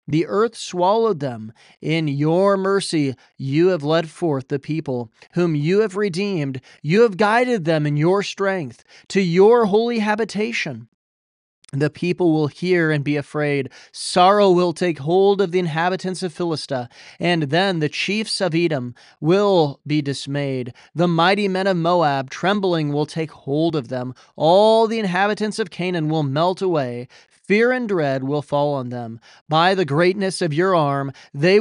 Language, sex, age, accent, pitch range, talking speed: English, male, 30-49, American, 140-185 Hz, 165 wpm